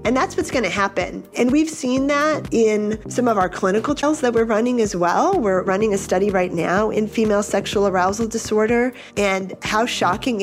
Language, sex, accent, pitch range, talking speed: English, female, American, 175-210 Hz, 200 wpm